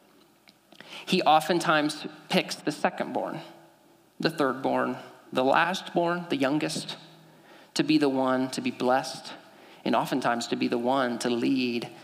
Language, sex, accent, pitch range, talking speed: English, male, American, 130-185 Hz, 145 wpm